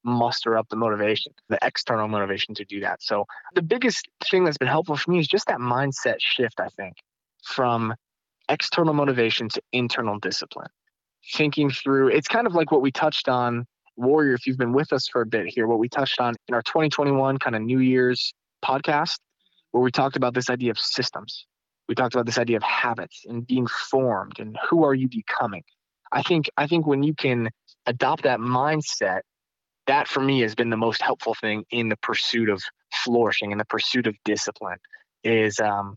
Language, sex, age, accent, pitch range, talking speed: English, male, 20-39, American, 115-135 Hz, 195 wpm